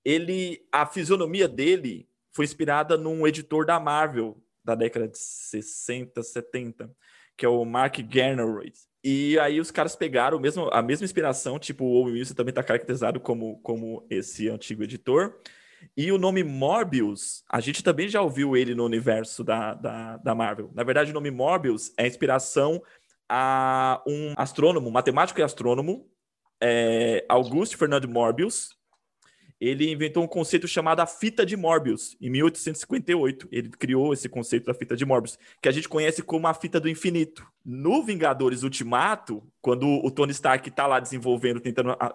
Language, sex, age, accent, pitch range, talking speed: Portuguese, male, 20-39, Brazilian, 120-155 Hz, 165 wpm